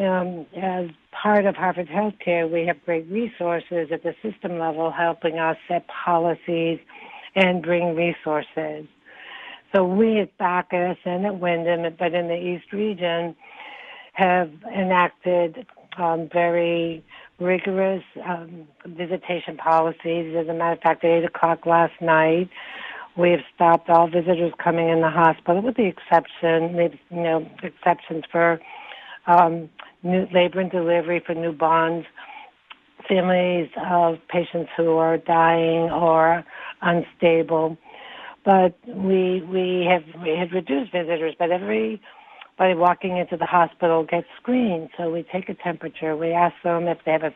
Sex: female